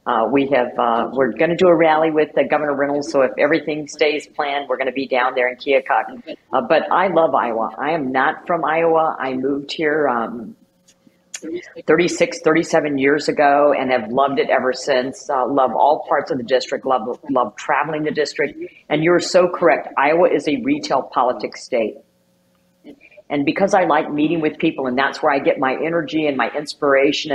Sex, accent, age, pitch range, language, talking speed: female, American, 50-69, 135-170 Hz, English, 200 wpm